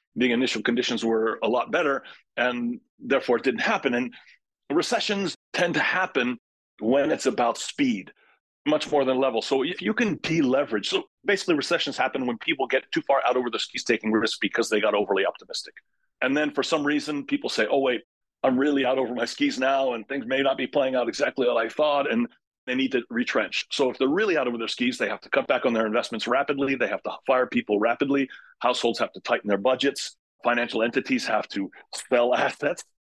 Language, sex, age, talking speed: English, male, 30-49, 210 wpm